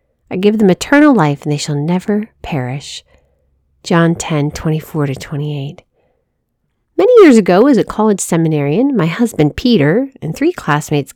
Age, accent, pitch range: 40-59, American, 170-275 Hz